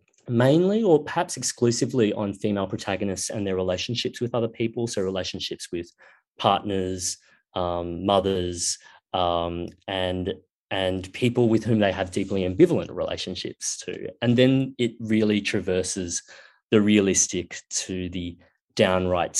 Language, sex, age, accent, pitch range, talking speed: English, male, 30-49, Australian, 95-120 Hz, 125 wpm